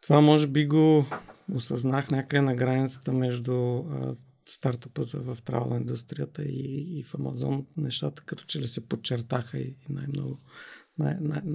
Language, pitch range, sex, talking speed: Bulgarian, 125-155 Hz, male, 140 wpm